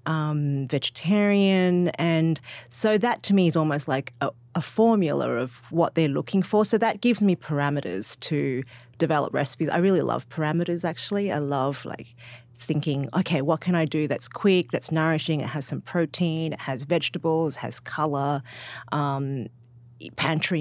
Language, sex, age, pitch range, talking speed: English, female, 30-49, 140-170 Hz, 165 wpm